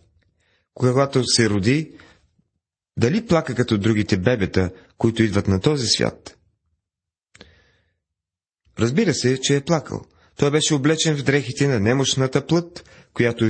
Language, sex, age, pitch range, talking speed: Bulgarian, male, 30-49, 95-130 Hz, 120 wpm